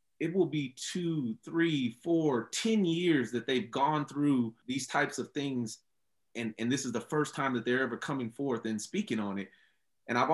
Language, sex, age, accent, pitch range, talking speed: English, male, 30-49, American, 110-135 Hz, 205 wpm